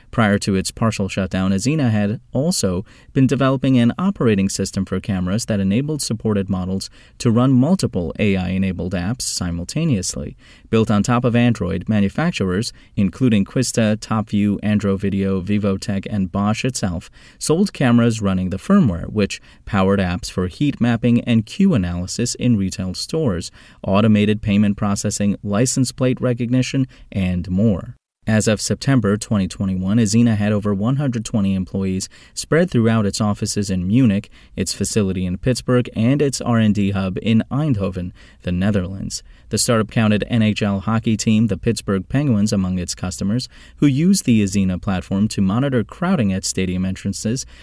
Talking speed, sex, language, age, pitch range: 145 wpm, male, English, 30-49, 95-120 Hz